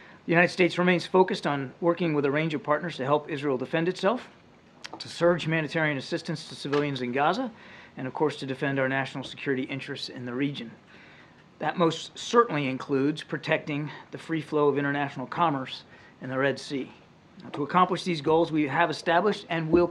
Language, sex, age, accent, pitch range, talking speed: English, male, 40-59, American, 140-170 Hz, 185 wpm